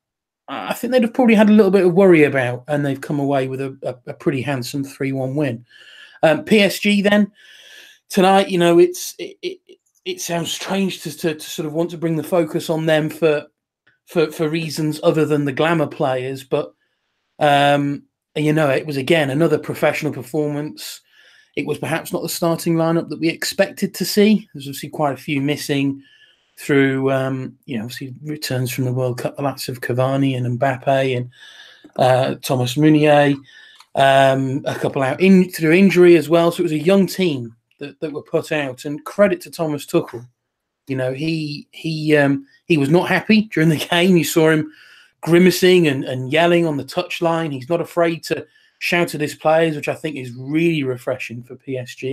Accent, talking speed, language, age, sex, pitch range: British, 195 wpm, English, 30-49, male, 135-175 Hz